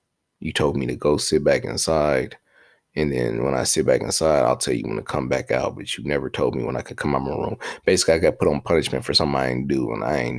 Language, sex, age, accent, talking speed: English, male, 30-49, American, 285 wpm